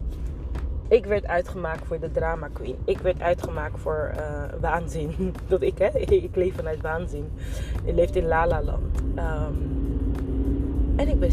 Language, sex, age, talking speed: Dutch, female, 20-39, 150 wpm